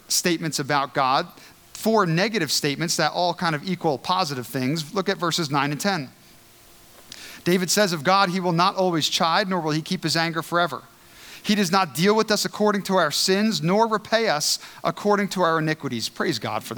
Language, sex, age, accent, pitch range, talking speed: English, male, 40-59, American, 150-195 Hz, 195 wpm